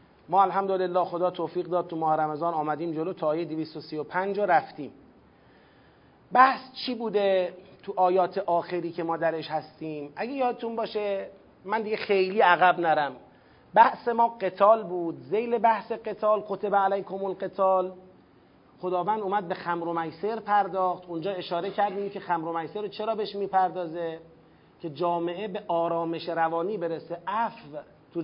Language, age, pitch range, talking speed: Persian, 40-59, 170-210 Hz, 140 wpm